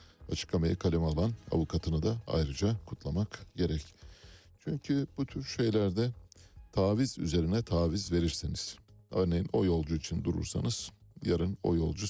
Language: Turkish